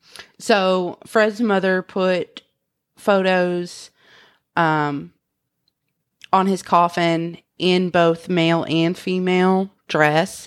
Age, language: 30-49, English